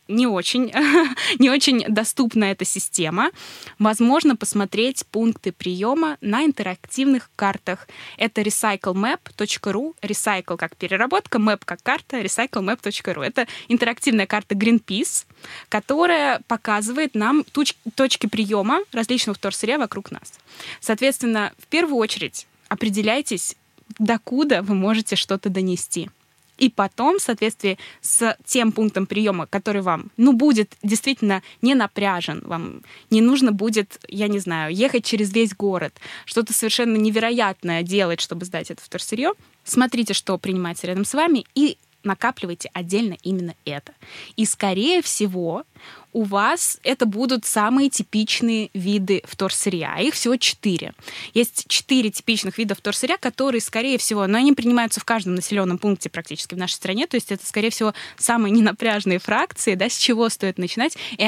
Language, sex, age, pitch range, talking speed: Russian, female, 20-39, 195-245 Hz, 135 wpm